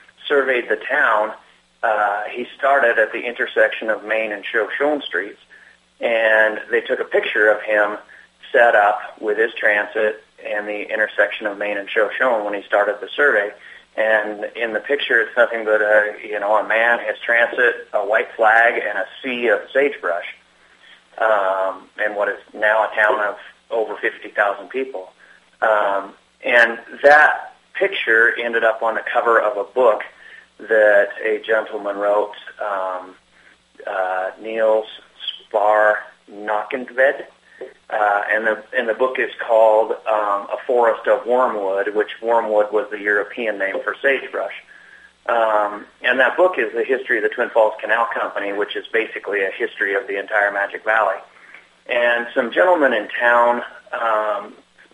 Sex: male